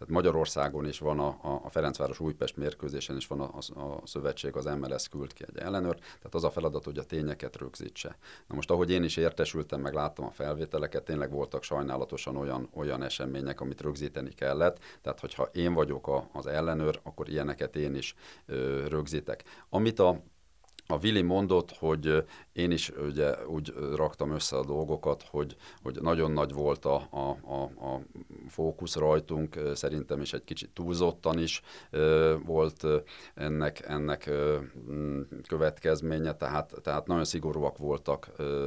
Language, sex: Hungarian, male